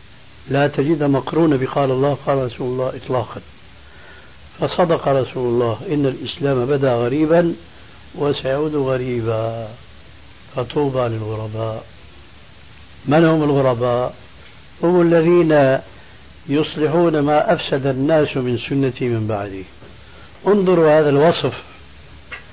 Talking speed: 95 wpm